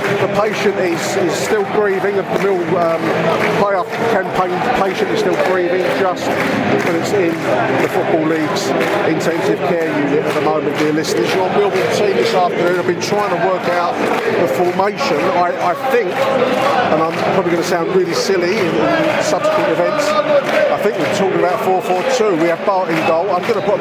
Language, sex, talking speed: English, male, 180 wpm